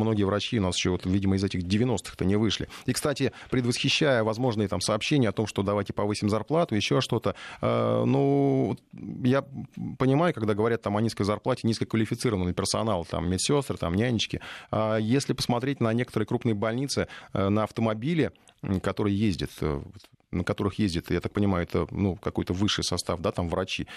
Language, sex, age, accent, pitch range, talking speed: Russian, male, 30-49, native, 100-130 Hz, 175 wpm